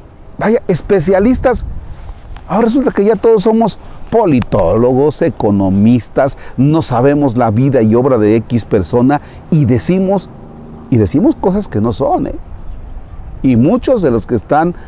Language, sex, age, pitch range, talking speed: Spanish, male, 40-59, 105-180 Hz, 135 wpm